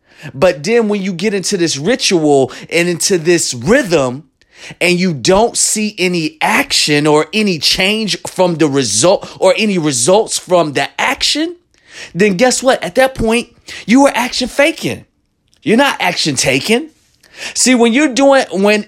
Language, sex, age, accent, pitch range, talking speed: English, male, 30-49, American, 160-210 Hz, 155 wpm